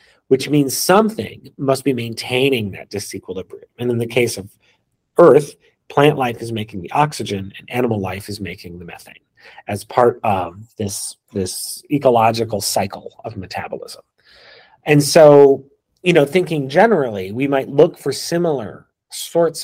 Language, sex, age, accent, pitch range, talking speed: English, male, 40-59, American, 105-150 Hz, 145 wpm